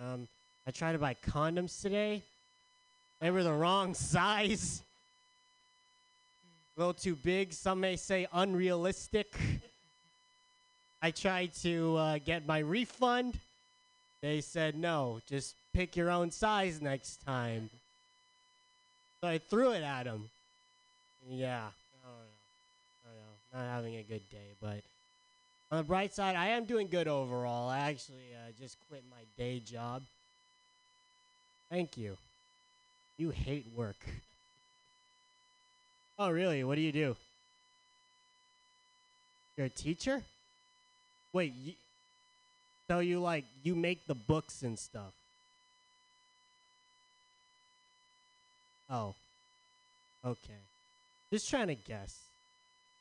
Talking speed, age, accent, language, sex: 115 wpm, 30-49, American, English, male